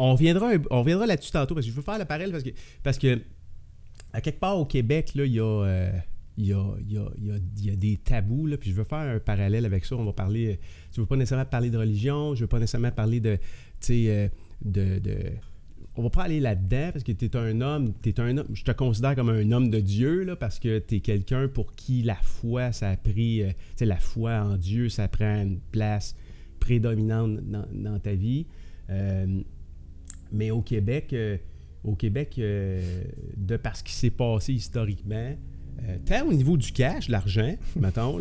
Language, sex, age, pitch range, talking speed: French, male, 30-49, 100-125 Hz, 205 wpm